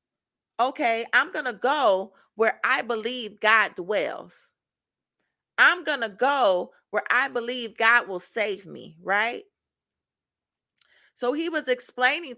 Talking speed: 125 wpm